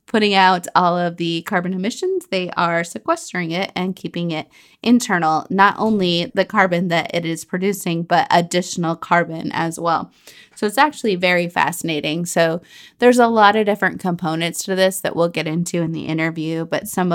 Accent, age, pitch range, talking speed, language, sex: American, 20-39, 165-200 Hz, 180 wpm, English, female